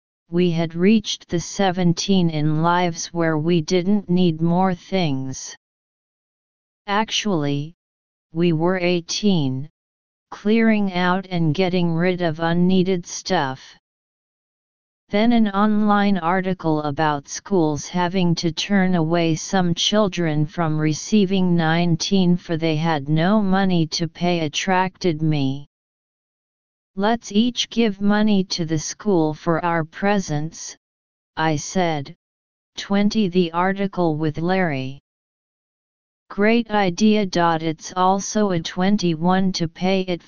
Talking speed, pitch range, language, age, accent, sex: 110 wpm, 160-195 Hz, English, 40-59, American, female